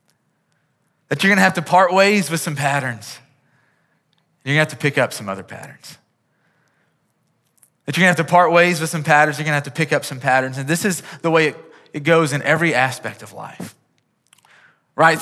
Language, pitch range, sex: English, 145-170 Hz, male